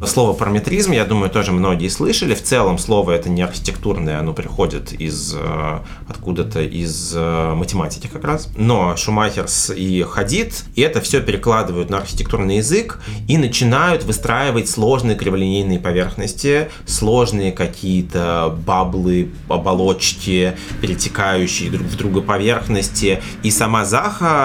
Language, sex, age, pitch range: Russian, male, 30-49, 90-110 Hz